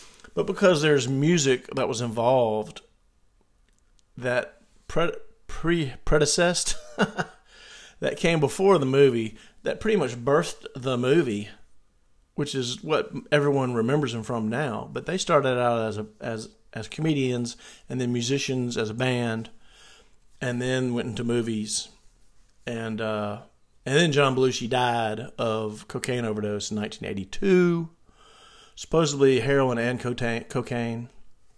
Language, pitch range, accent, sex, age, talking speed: English, 115-140 Hz, American, male, 40-59, 125 wpm